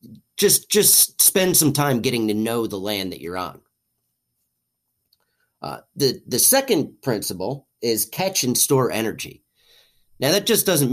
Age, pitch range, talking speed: 30-49, 105-140 Hz, 150 wpm